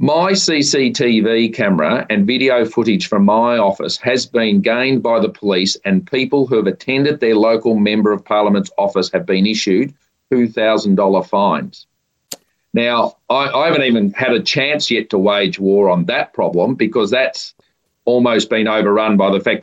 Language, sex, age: English, male, 40-59